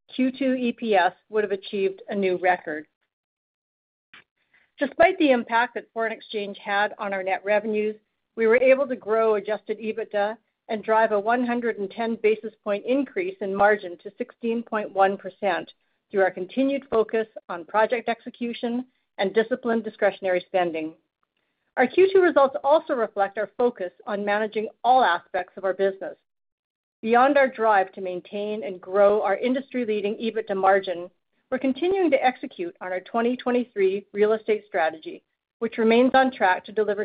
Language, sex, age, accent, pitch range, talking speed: English, female, 50-69, American, 195-245 Hz, 145 wpm